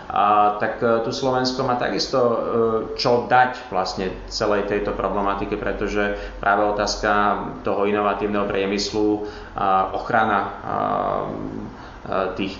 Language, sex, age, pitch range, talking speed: Slovak, male, 30-49, 100-110 Hz, 90 wpm